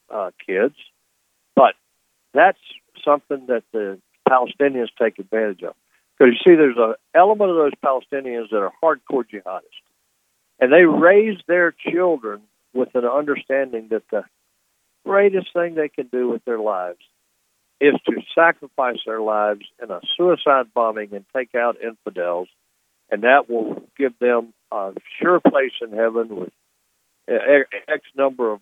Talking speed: 145 wpm